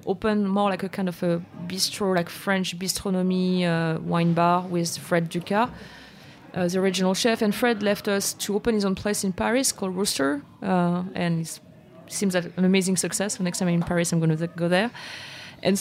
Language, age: English, 30-49